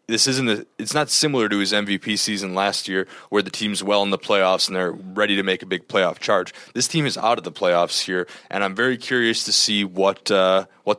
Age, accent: 20-39, American